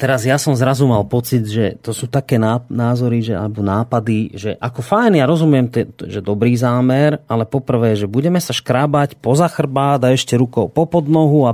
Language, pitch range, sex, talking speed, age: Slovak, 110-140 Hz, male, 180 wpm, 30-49